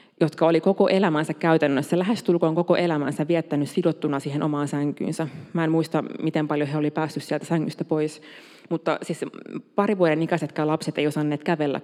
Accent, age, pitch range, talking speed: native, 30-49, 150-180 Hz, 165 wpm